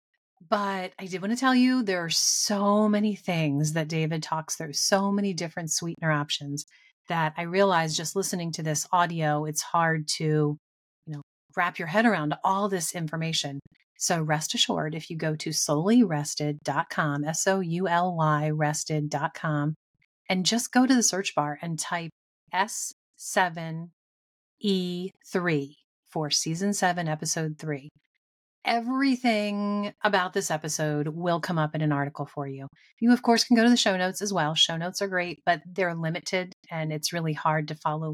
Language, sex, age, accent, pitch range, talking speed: English, female, 30-49, American, 155-190 Hz, 160 wpm